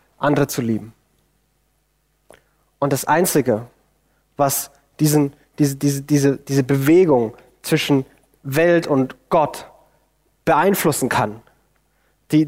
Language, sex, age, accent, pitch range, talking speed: German, male, 20-39, German, 135-165 Hz, 80 wpm